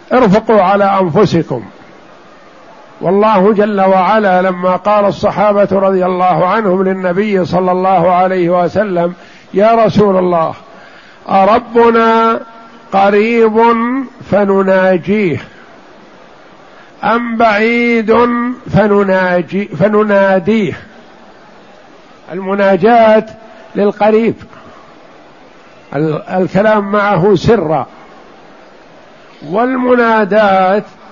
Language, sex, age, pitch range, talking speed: Arabic, male, 50-69, 185-220 Hz, 60 wpm